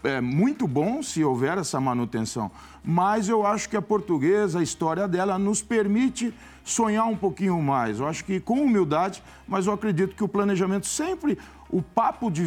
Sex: male